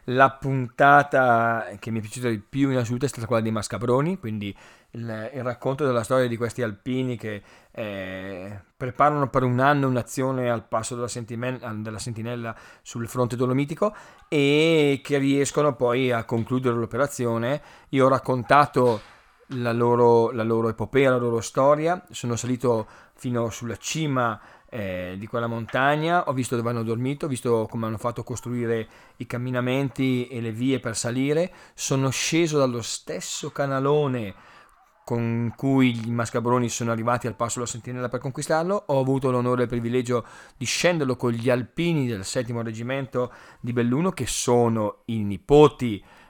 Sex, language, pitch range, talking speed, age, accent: male, Italian, 115-135 Hz, 155 wpm, 30-49, native